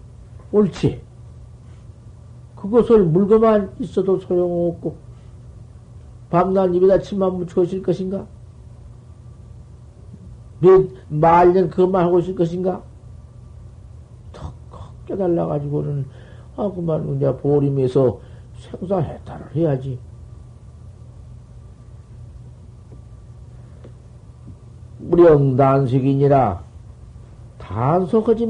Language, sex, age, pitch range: Korean, male, 50-69, 115-175 Hz